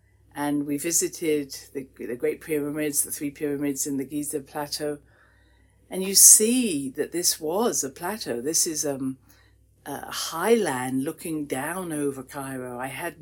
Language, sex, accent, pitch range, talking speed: English, female, British, 125-155 Hz, 150 wpm